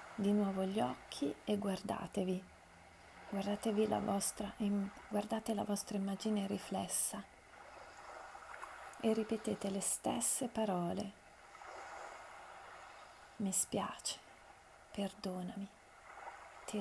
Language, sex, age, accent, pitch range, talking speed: Italian, female, 30-49, native, 190-210 Hz, 80 wpm